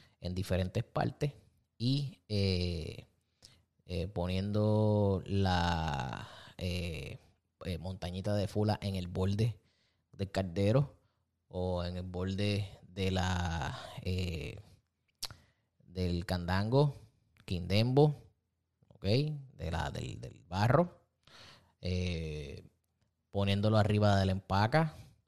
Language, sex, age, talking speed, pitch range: Spanish, male, 20-39, 95 wpm, 90-110 Hz